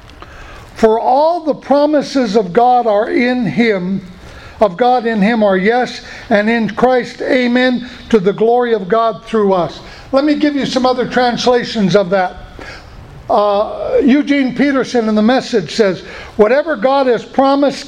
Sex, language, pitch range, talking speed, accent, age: male, English, 225-270 Hz, 155 wpm, American, 60-79